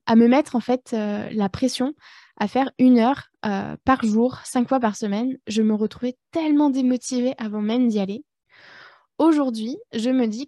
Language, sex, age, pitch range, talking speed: French, female, 20-39, 210-255 Hz, 185 wpm